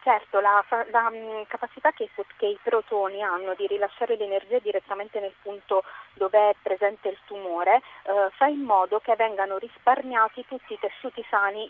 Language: Italian